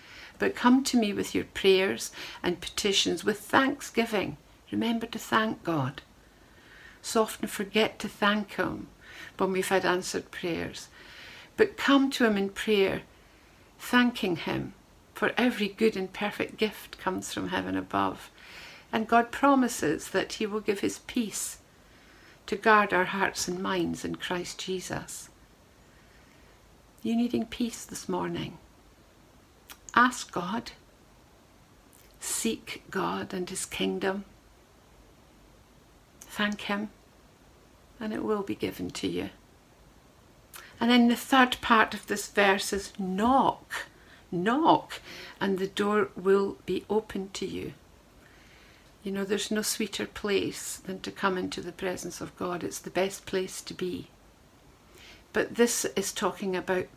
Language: English